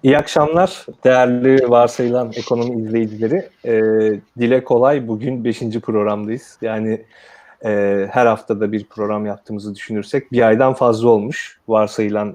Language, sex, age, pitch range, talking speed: Turkish, male, 30-49, 110-130 Hz, 120 wpm